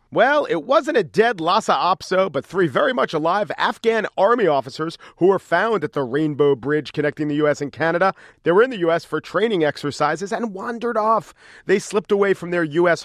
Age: 40-59